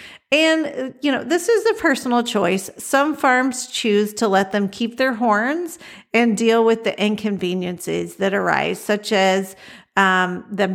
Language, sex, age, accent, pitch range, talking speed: English, female, 50-69, American, 195-245 Hz, 155 wpm